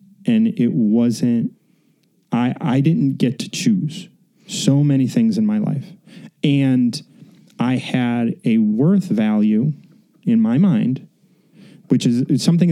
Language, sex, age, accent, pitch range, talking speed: English, male, 30-49, American, 175-220 Hz, 125 wpm